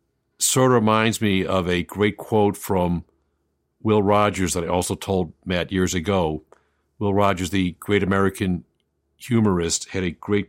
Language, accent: English, American